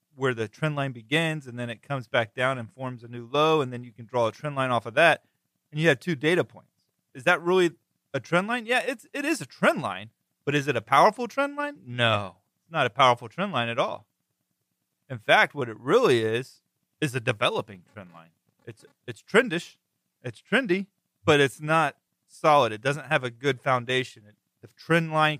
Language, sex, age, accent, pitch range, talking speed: English, male, 30-49, American, 115-155 Hz, 215 wpm